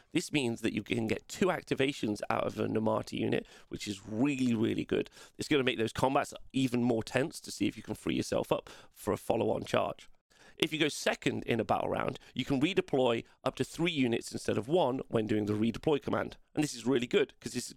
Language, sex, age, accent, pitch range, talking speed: English, male, 40-59, British, 115-140 Hz, 235 wpm